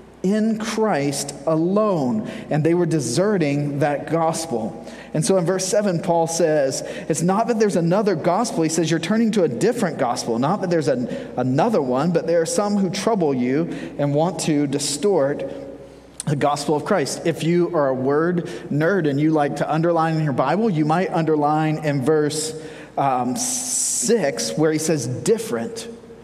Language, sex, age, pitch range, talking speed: English, male, 30-49, 145-190 Hz, 170 wpm